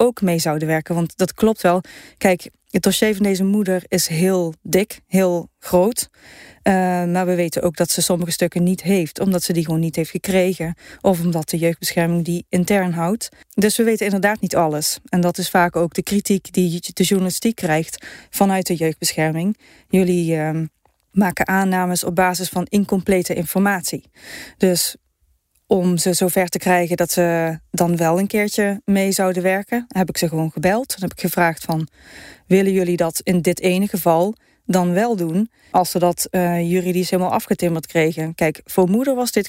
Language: Dutch